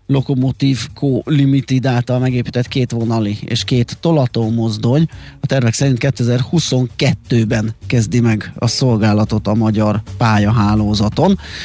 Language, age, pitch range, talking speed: Hungarian, 30-49, 110-130 Hz, 110 wpm